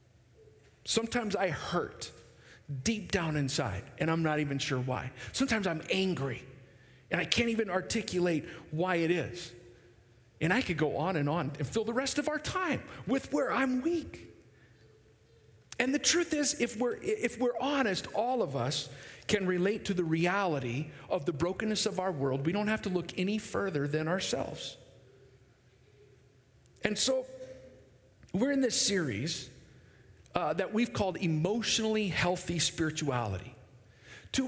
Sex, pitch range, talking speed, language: male, 130-190 Hz, 150 wpm, English